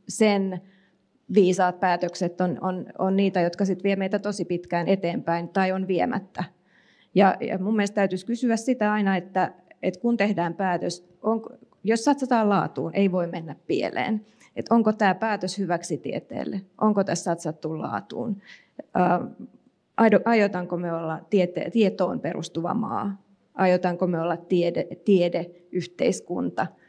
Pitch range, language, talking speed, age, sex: 175-210 Hz, Finnish, 135 wpm, 30-49, female